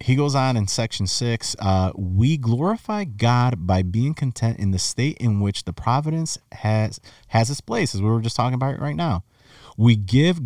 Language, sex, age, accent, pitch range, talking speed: English, male, 40-59, American, 100-135 Hz, 200 wpm